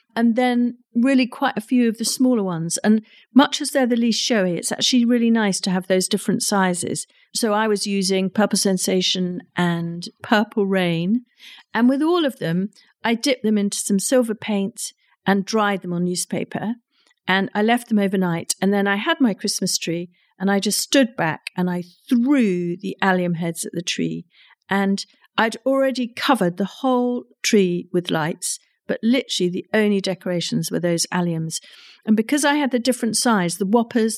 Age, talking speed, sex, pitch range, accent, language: 50-69, 185 wpm, female, 185-245 Hz, British, English